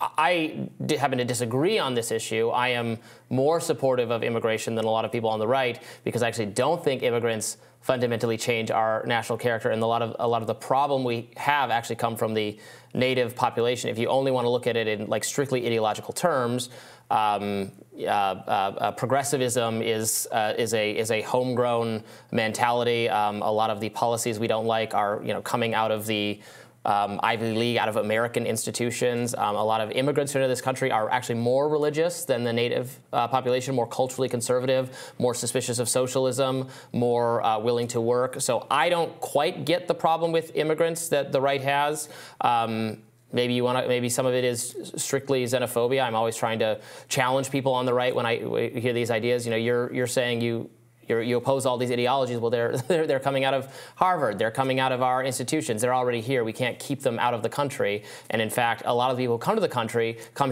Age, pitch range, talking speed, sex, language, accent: 20-39, 115-130 Hz, 215 wpm, male, English, American